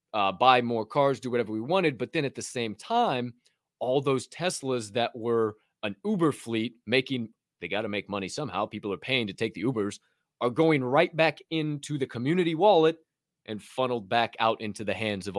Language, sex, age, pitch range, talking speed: English, male, 20-39, 115-155 Hz, 205 wpm